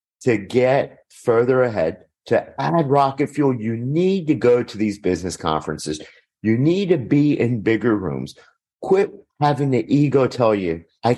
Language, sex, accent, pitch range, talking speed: English, male, American, 115-160 Hz, 160 wpm